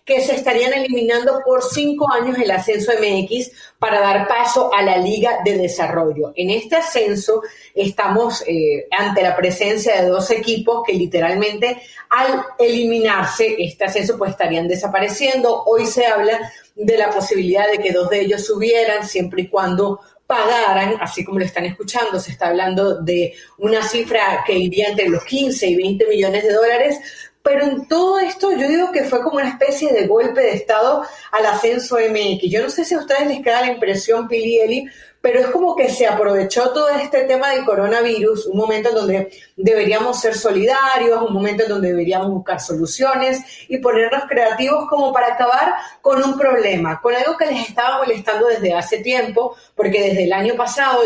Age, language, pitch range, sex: 40-59, Spanish, 195-250 Hz, female